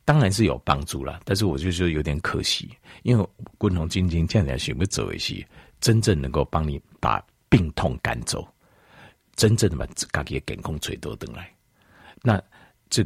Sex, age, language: male, 50-69, Chinese